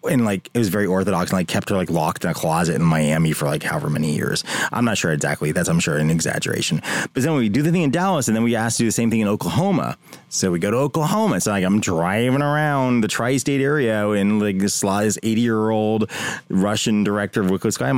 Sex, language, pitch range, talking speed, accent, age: male, English, 95-130 Hz, 245 wpm, American, 20-39